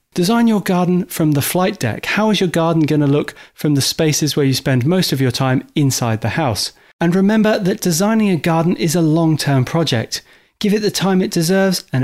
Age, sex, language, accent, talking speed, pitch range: 30-49, male, English, British, 220 wpm, 125-180 Hz